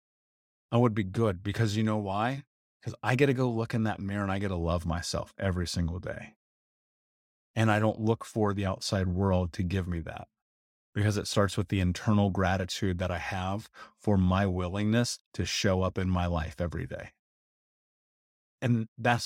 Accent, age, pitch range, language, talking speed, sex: American, 30-49, 95-115 Hz, English, 190 wpm, male